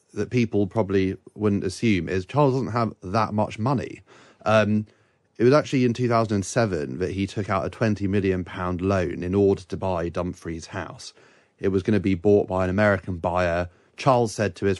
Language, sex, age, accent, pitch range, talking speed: English, male, 30-49, British, 95-110 Hz, 185 wpm